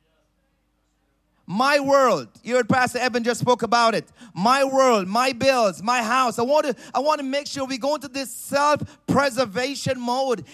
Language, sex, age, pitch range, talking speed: English, male, 30-49, 240-295 Hz, 170 wpm